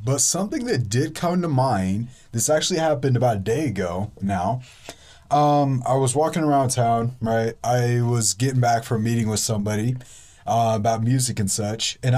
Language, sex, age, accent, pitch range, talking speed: English, male, 20-39, American, 110-140 Hz, 175 wpm